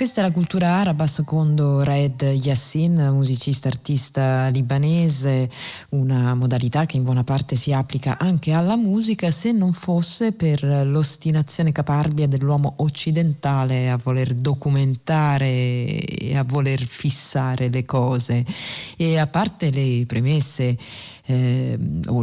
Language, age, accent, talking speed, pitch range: Italian, 30-49, native, 120 wpm, 130-155 Hz